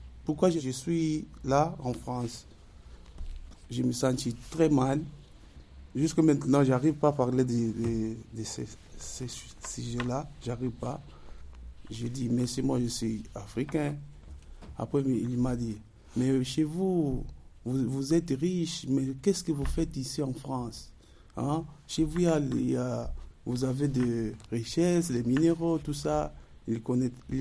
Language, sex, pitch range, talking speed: French, male, 110-140 Hz, 155 wpm